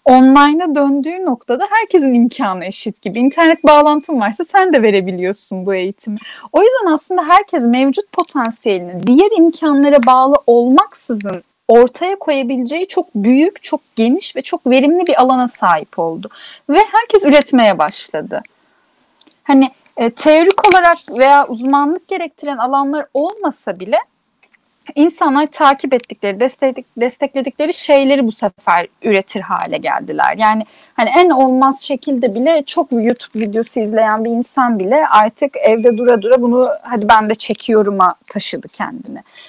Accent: Turkish